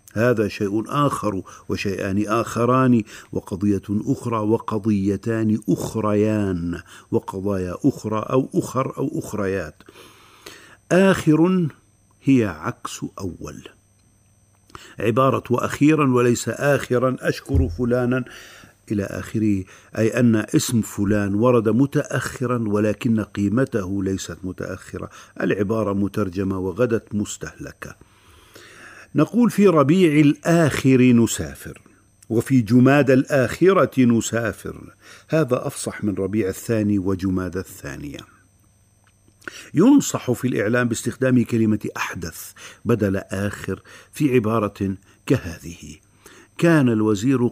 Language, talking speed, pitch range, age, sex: Arabic, 90 wpm, 100-125 Hz, 50-69, male